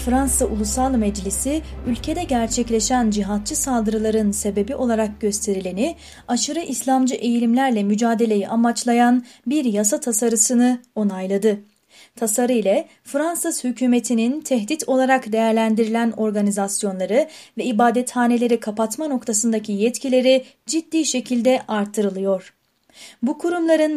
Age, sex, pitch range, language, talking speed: 30-49, female, 220-265 Hz, Turkish, 95 wpm